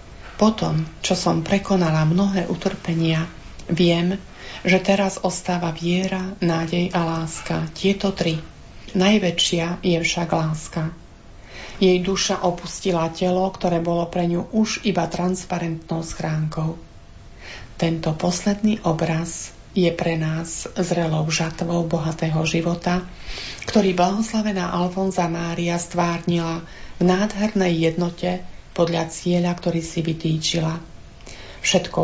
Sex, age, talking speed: female, 40-59, 105 wpm